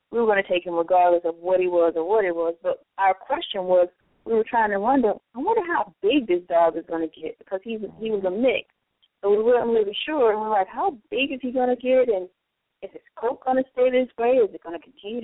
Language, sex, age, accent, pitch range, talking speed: English, female, 30-49, American, 195-275 Hz, 280 wpm